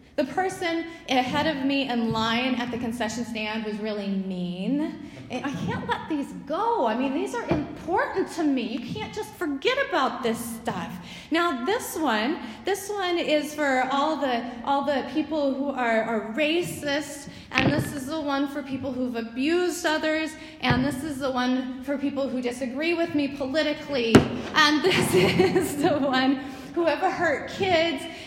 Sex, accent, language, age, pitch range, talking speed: female, American, English, 30-49, 255-325 Hz, 170 wpm